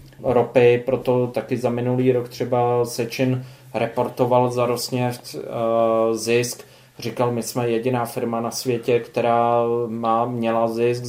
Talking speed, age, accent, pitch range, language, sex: 125 wpm, 20-39, native, 115-125 Hz, Czech, male